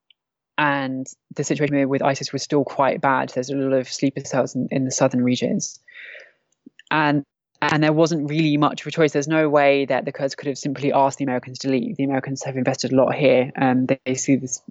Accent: British